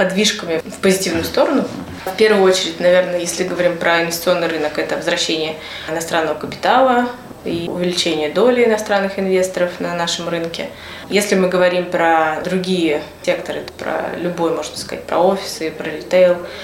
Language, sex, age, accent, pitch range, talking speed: Russian, female, 20-39, native, 170-195 Hz, 140 wpm